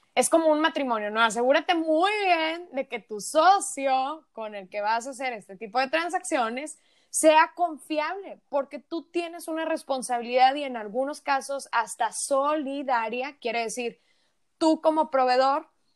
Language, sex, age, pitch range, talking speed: Spanish, female, 20-39, 240-295 Hz, 150 wpm